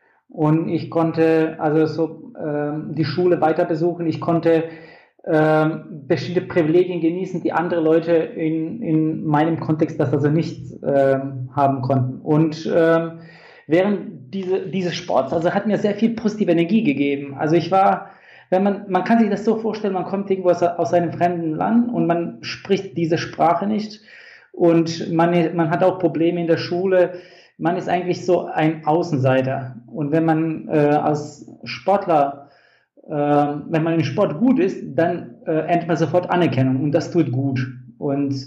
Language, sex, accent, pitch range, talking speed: German, male, German, 155-180 Hz, 165 wpm